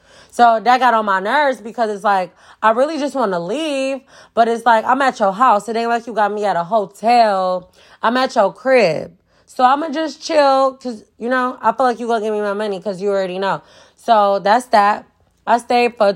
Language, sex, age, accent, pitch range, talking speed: English, female, 20-39, American, 195-255 Hz, 240 wpm